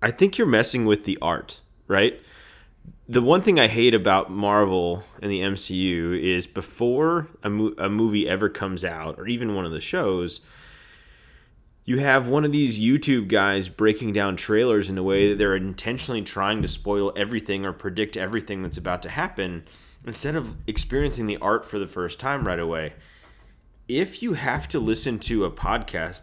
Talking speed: 180 wpm